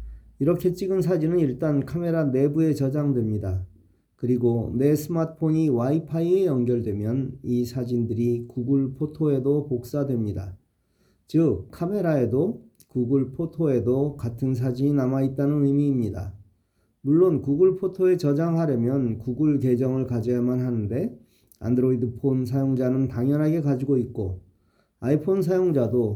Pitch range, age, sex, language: 120-150 Hz, 40-59, male, Korean